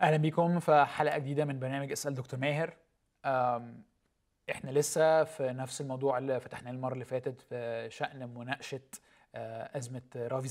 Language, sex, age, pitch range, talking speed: Arabic, male, 20-39, 125-150 Hz, 145 wpm